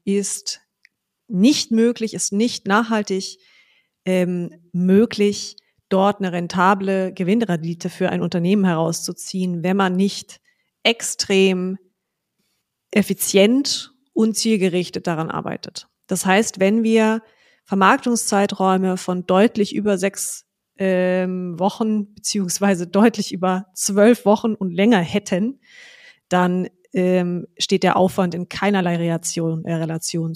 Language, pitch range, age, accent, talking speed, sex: German, 180-215 Hz, 30-49, German, 100 wpm, female